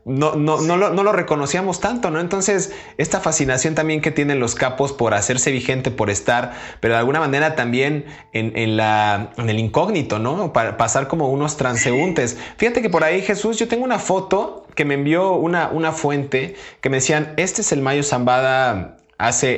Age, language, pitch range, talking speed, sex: 20-39, Spanish, 115-155 Hz, 195 wpm, male